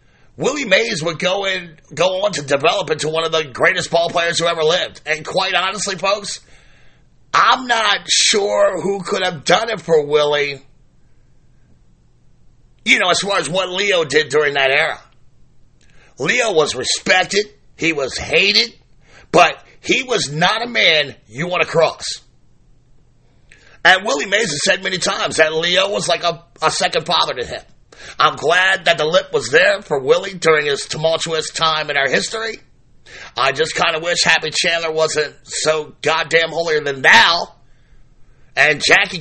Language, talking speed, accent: English, 160 wpm, American